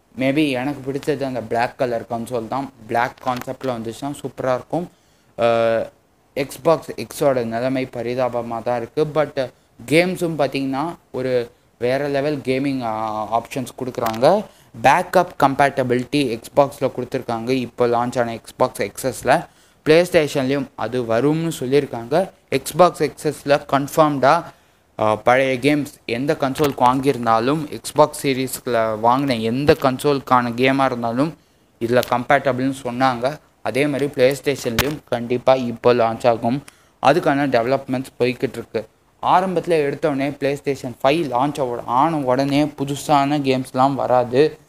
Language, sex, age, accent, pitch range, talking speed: Tamil, male, 20-39, native, 120-145 Hz, 110 wpm